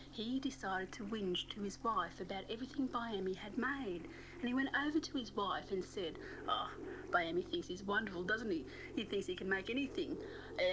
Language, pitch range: English, 200-270 Hz